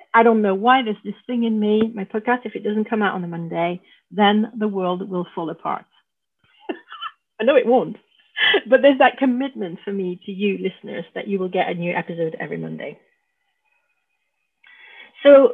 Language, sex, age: English, female, 40-59